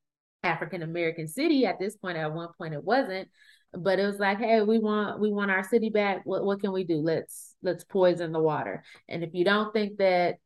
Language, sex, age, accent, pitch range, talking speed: English, female, 30-49, American, 170-200 Hz, 220 wpm